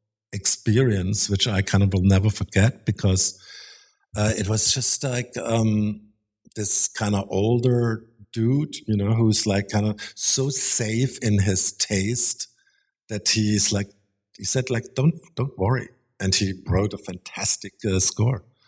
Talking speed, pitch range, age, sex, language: 150 wpm, 90-110 Hz, 50-69, male, English